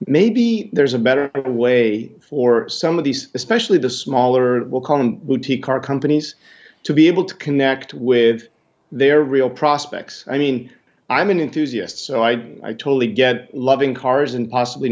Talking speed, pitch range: 165 wpm, 115-135 Hz